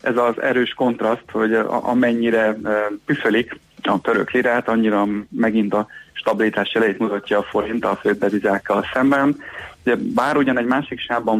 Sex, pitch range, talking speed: male, 100-115 Hz, 140 wpm